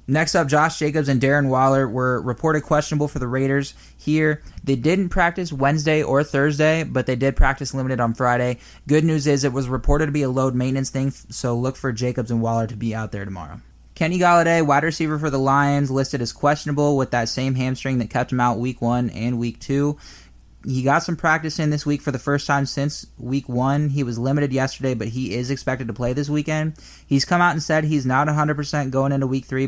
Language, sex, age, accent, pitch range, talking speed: English, male, 20-39, American, 120-145 Hz, 225 wpm